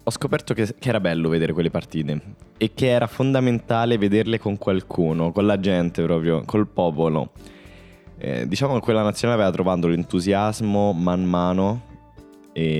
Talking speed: 155 wpm